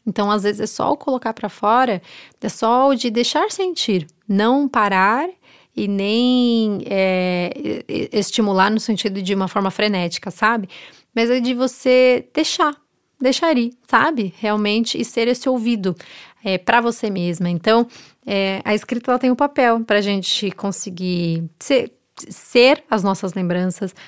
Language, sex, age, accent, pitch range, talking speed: Portuguese, female, 20-39, Brazilian, 190-230 Hz, 150 wpm